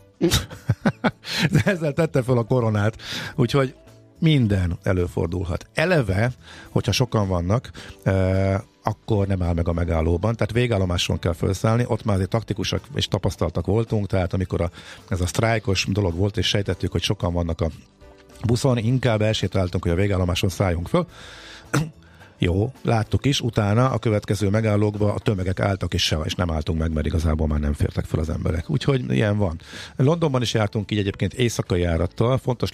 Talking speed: 155 wpm